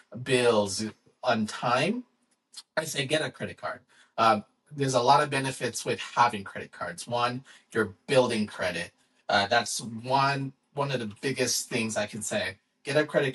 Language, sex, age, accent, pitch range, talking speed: English, male, 30-49, American, 120-150 Hz, 165 wpm